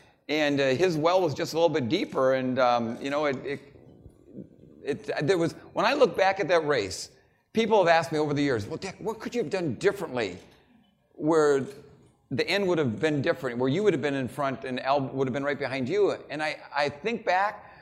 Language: English